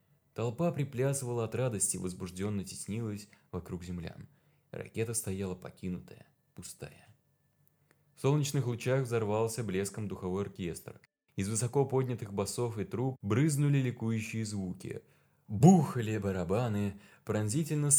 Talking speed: 105 wpm